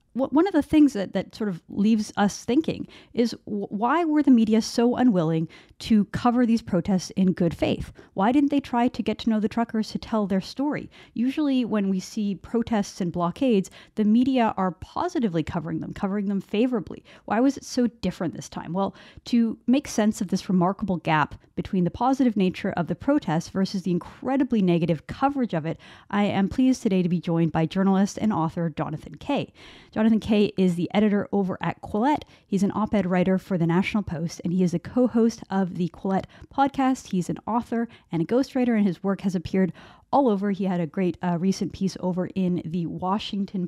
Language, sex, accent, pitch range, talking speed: English, female, American, 175-230 Hz, 200 wpm